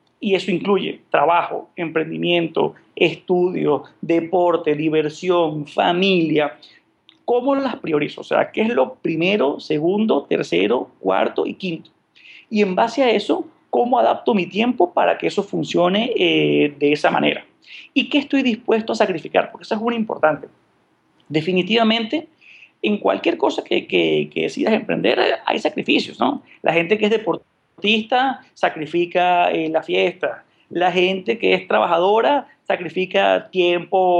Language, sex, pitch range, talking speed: Spanish, male, 170-235 Hz, 140 wpm